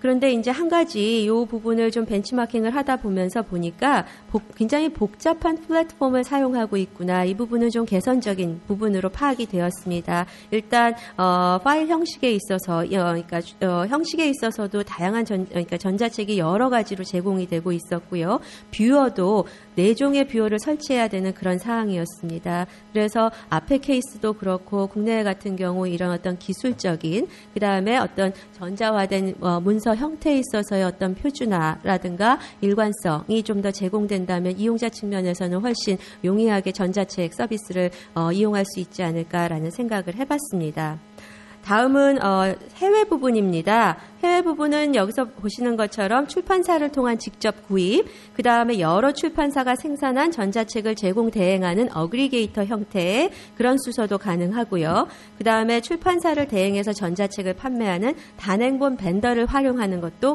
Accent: native